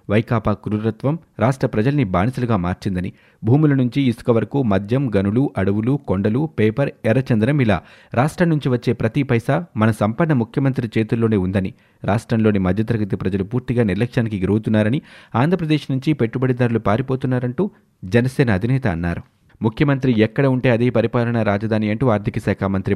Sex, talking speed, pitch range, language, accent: male, 130 wpm, 105-135 Hz, Telugu, native